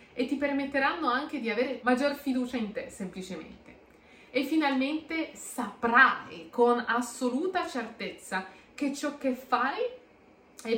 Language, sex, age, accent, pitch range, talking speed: Italian, female, 30-49, native, 200-255 Hz, 120 wpm